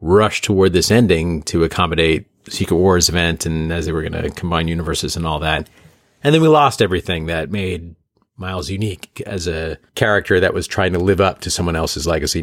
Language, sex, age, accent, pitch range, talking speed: English, male, 40-59, American, 90-115 Hz, 205 wpm